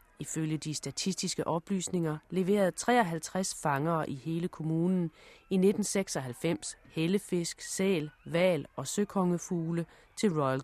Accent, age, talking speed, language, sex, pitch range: native, 30-49, 105 wpm, Danish, female, 150-195 Hz